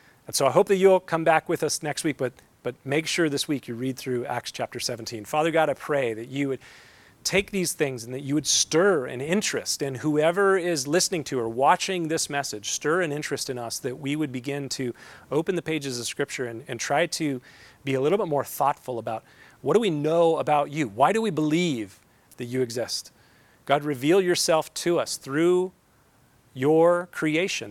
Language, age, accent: English, 40-59, American